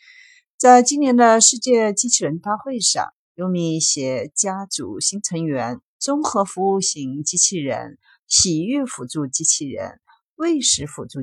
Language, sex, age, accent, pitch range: Chinese, female, 50-69, native, 145-245 Hz